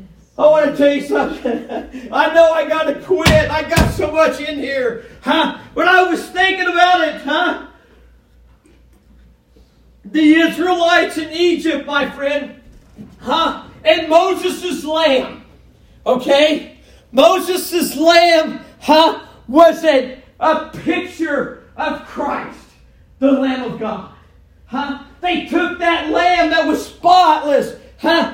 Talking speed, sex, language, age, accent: 125 wpm, male, English, 50-69, American